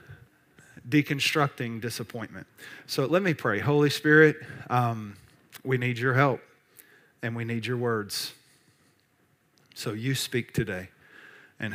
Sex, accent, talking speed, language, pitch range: male, American, 115 wpm, English, 125-150 Hz